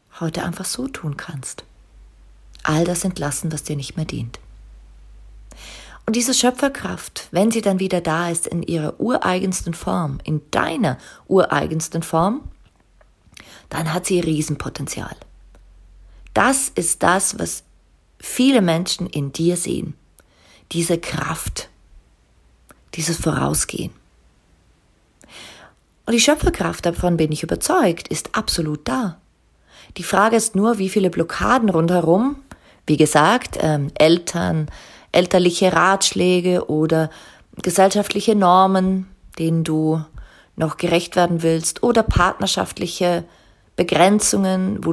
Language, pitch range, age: German, 155-195 Hz, 40-59